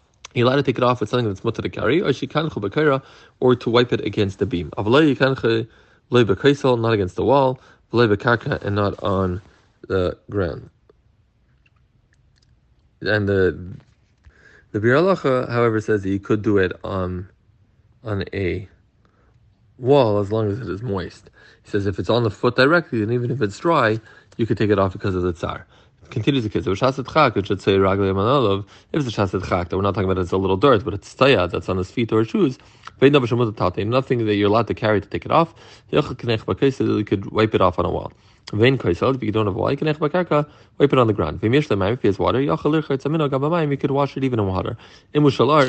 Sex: male